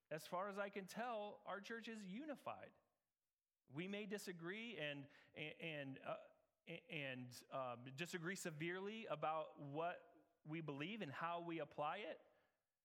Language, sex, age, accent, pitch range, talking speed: English, male, 30-49, American, 135-180 Hz, 140 wpm